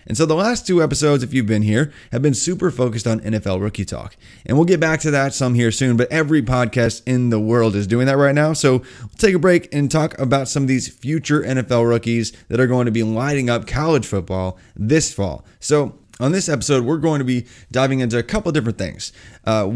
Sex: male